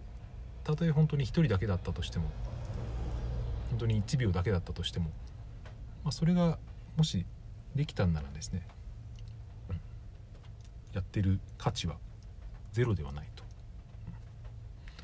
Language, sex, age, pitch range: Japanese, male, 40-59, 95-110 Hz